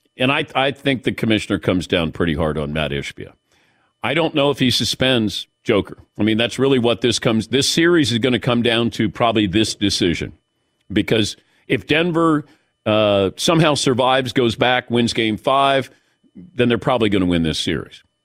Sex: male